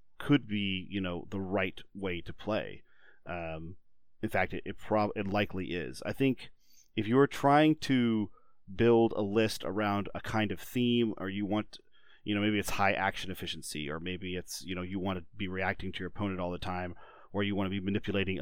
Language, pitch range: English, 95-110 Hz